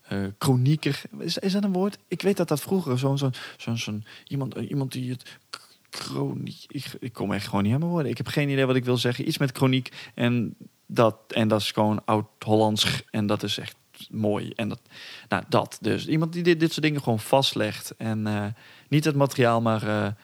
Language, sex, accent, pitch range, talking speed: Dutch, male, Dutch, 110-140 Hz, 215 wpm